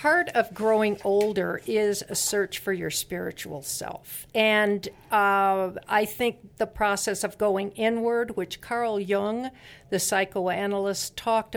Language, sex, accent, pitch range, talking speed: English, female, American, 190-225 Hz, 135 wpm